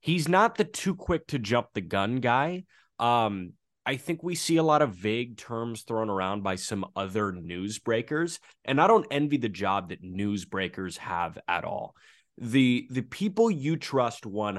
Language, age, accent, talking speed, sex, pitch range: English, 20-39, American, 175 wpm, male, 95-130 Hz